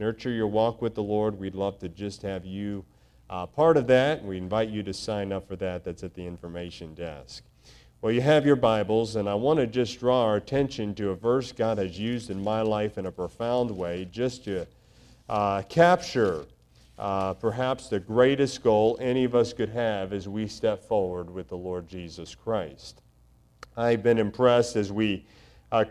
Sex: male